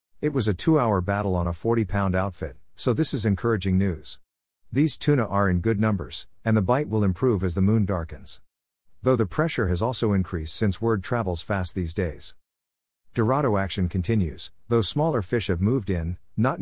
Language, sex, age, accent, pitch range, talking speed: English, male, 50-69, American, 90-115 Hz, 190 wpm